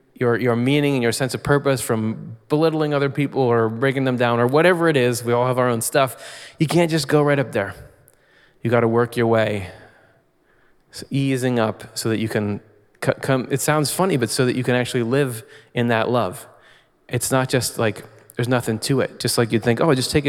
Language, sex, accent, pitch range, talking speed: English, male, American, 115-135 Hz, 225 wpm